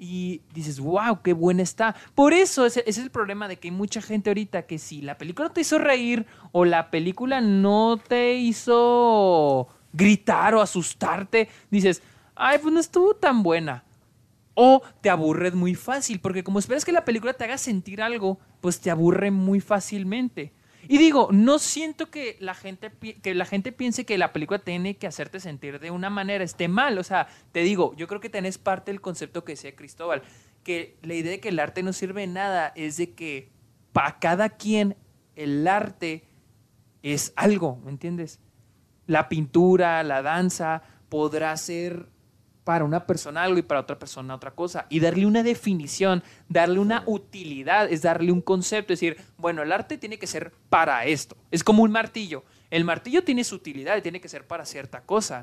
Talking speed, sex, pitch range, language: 190 wpm, male, 155-210 Hz, Spanish